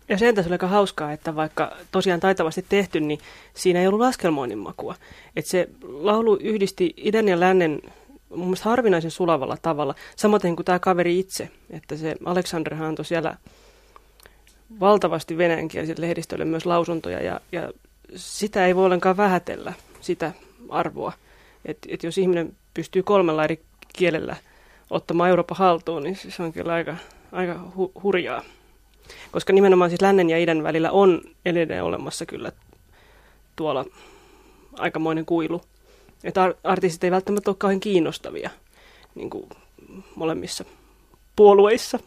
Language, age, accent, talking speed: Finnish, 30-49, native, 130 wpm